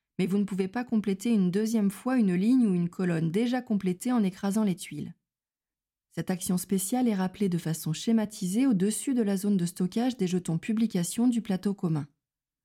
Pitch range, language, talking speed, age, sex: 165-220 Hz, French, 190 wpm, 30-49, female